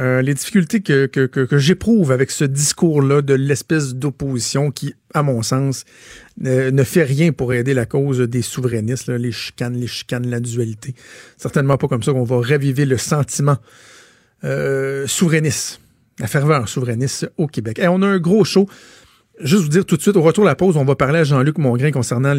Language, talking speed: French, 200 wpm